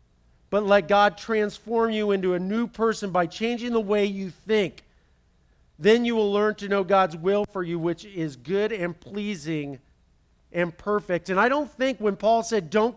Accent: American